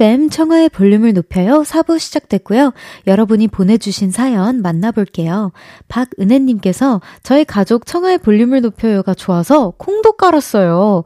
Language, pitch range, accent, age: Korean, 215-295 Hz, native, 20-39